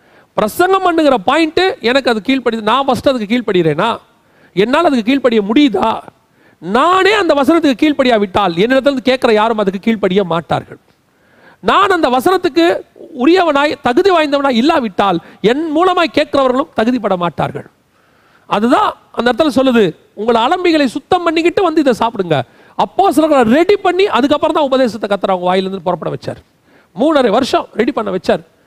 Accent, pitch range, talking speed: native, 190-295 Hz, 105 wpm